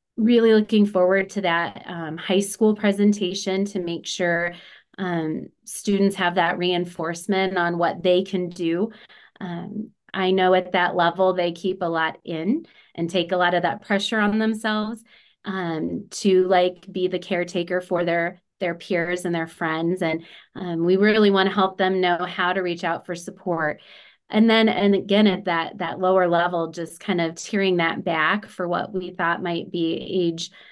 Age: 30-49